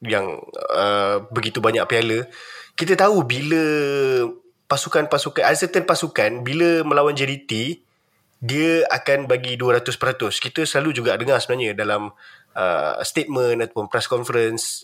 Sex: male